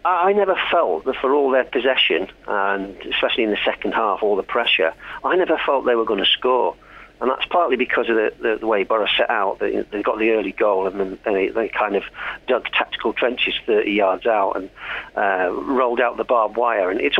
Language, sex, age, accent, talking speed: English, male, 50-69, British, 215 wpm